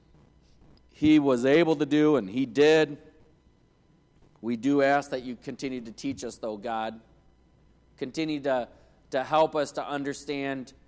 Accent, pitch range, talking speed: American, 115-145 Hz, 145 wpm